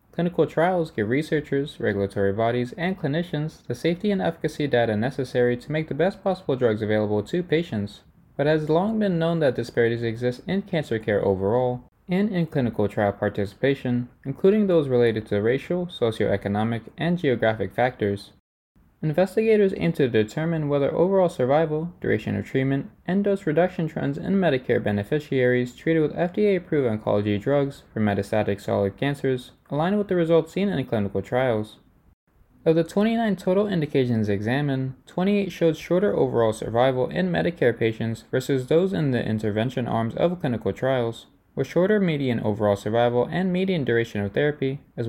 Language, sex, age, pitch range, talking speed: English, male, 20-39, 110-165 Hz, 155 wpm